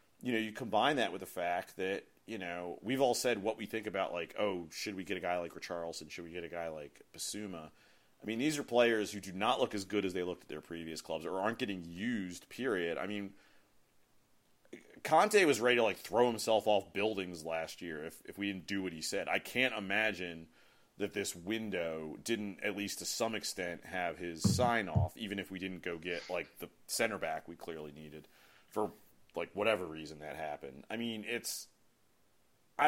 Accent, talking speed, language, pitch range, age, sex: American, 215 wpm, English, 85-110 Hz, 30-49, male